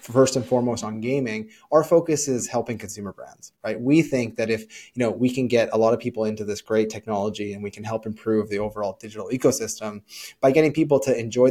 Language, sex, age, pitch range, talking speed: English, male, 20-39, 110-135 Hz, 225 wpm